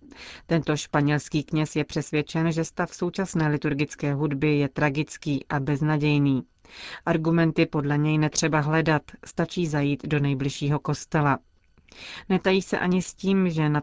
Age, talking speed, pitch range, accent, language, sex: 40-59, 135 wpm, 145-165 Hz, native, Czech, female